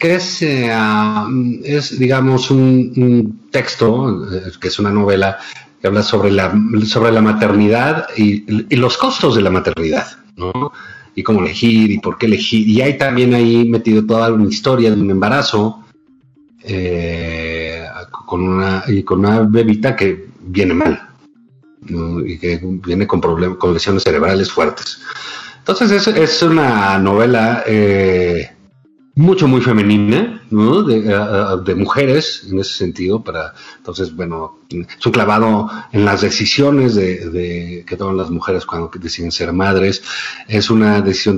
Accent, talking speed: Mexican, 150 wpm